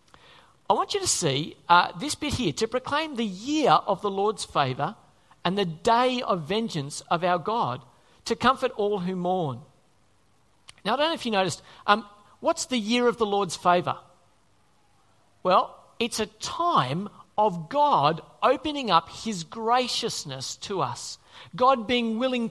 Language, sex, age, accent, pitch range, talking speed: English, male, 40-59, Australian, 180-250 Hz, 160 wpm